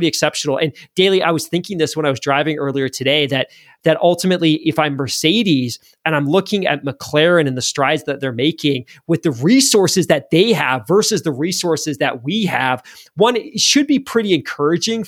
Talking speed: 185 wpm